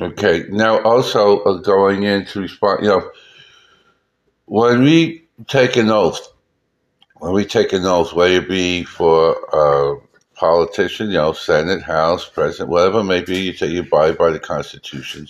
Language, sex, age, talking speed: English, male, 60-79, 160 wpm